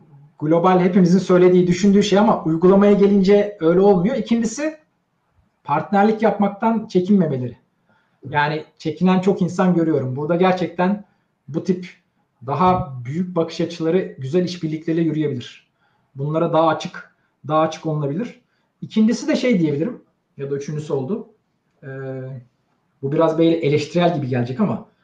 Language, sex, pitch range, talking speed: Turkish, male, 155-200 Hz, 125 wpm